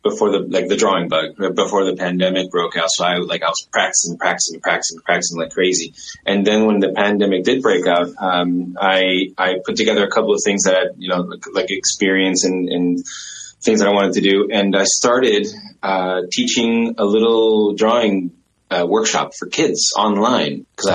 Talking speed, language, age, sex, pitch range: 190 wpm, English, 20-39, male, 95-120 Hz